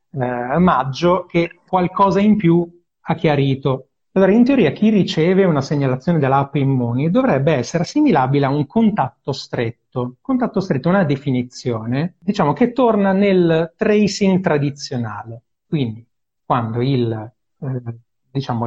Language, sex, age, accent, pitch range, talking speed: Italian, male, 30-49, native, 130-175 Hz, 130 wpm